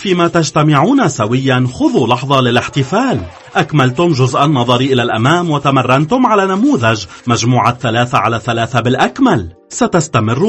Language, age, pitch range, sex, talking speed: Arabic, 40-59, 115-150 Hz, male, 115 wpm